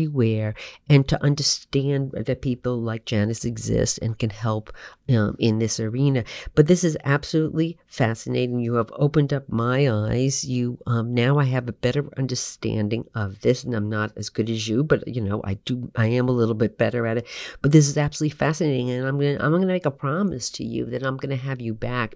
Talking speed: 210 wpm